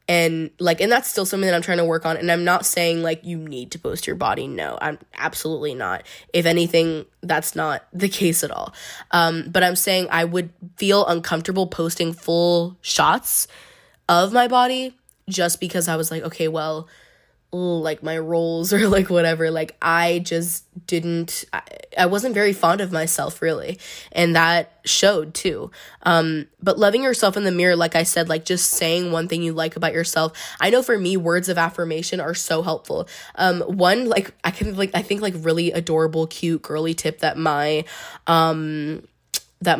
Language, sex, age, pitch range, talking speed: English, female, 10-29, 160-185 Hz, 190 wpm